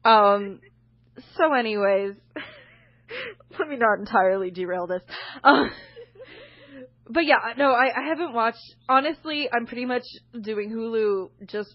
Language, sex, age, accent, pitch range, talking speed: English, female, 20-39, American, 175-255 Hz, 130 wpm